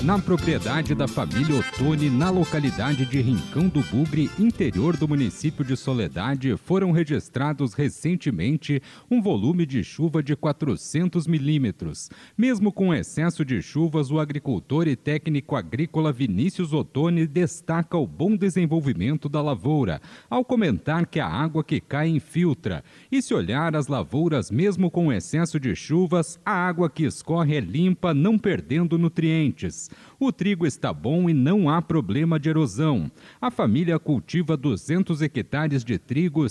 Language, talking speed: Portuguese, 145 wpm